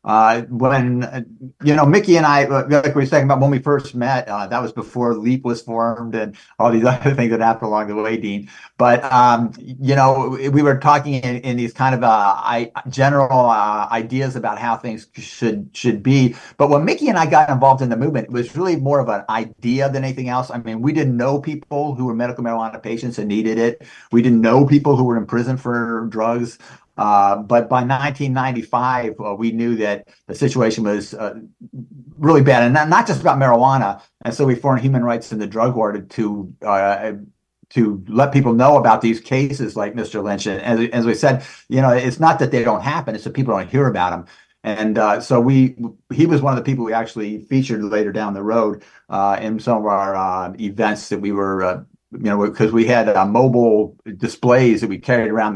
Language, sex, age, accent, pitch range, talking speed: English, male, 50-69, American, 110-135 Hz, 220 wpm